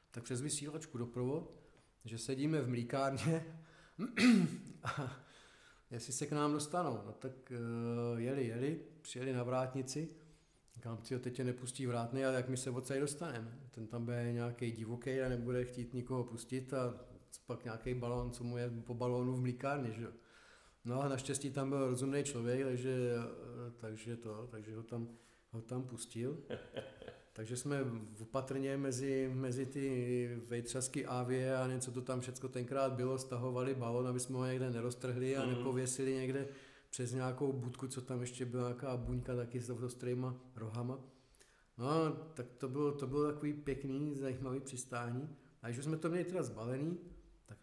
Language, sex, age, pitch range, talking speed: Czech, male, 40-59, 120-140 Hz, 160 wpm